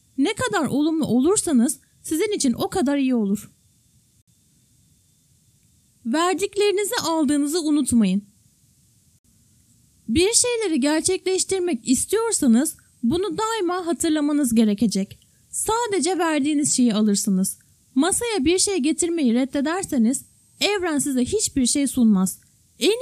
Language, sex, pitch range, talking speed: Turkish, female, 240-360 Hz, 95 wpm